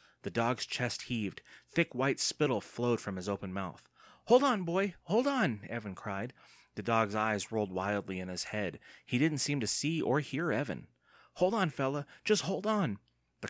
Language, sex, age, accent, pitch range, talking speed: English, male, 30-49, American, 100-140 Hz, 185 wpm